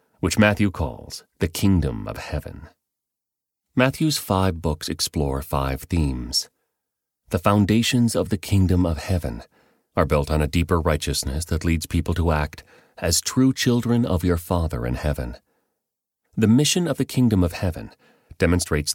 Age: 30-49